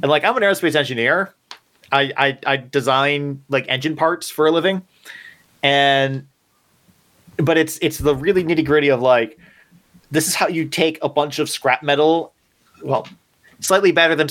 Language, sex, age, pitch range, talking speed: English, male, 30-49, 125-150 Hz, 165 wpm